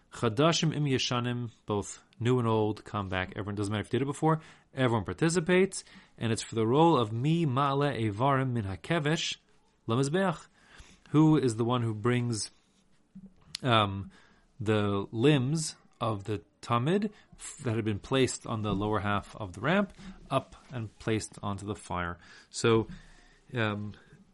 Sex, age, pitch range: male, 30-49, 105-145 Hz